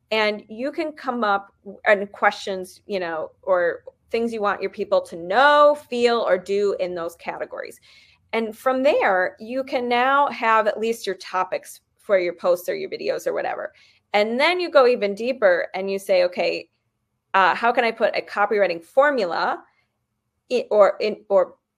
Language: English